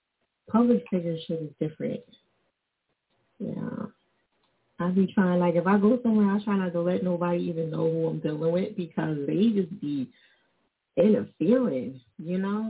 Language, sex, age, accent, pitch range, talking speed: English, female, 30-49, American, 170-220 Hz, 155 wpm